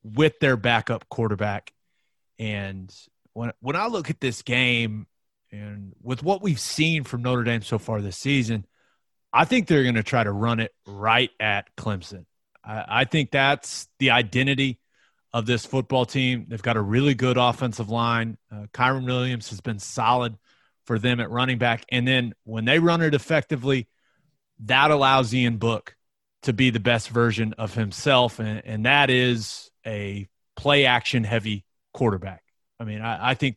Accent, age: American, 30-49